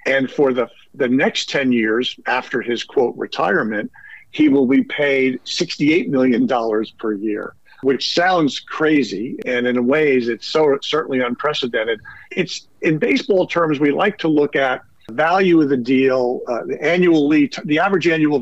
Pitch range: 120-155 Hz